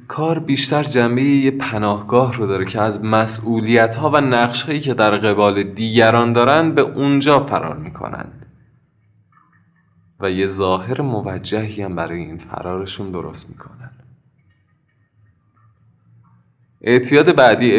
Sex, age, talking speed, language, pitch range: male, 20-39, 110 wpm, Persian, 105-135 Hz